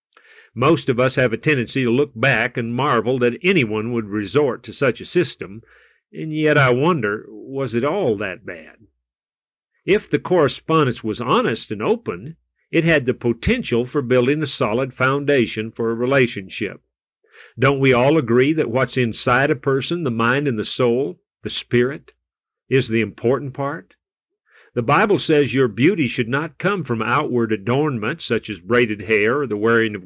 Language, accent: English, American